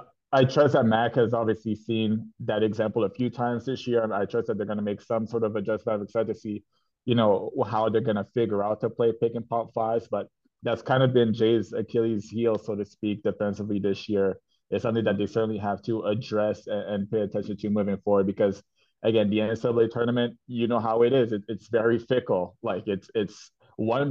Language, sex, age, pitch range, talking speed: English, male, 20-39, 105-115 Hz, 220 wpm